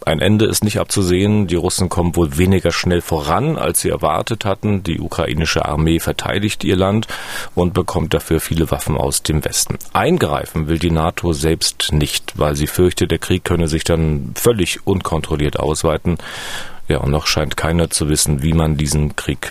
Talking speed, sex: 180 wpm, male